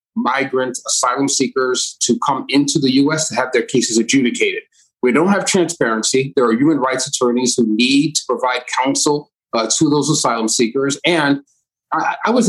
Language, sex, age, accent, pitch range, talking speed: English, male, 30-49, American, 120-150 Hz, 175 wpm